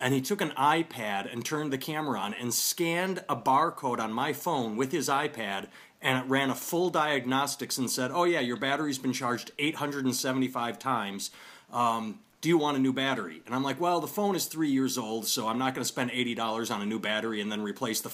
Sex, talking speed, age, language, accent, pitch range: male, 220 wpm, 30-49, English, American, 125-165 Hz